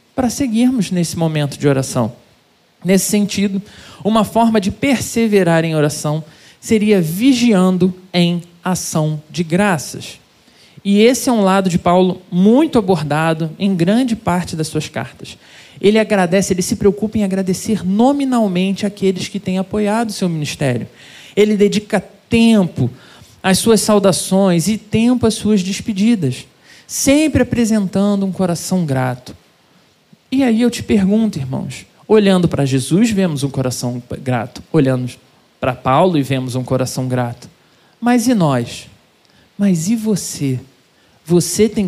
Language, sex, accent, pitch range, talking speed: Portuguese, male, Brazilian, 140-205 Hz, 135 wpm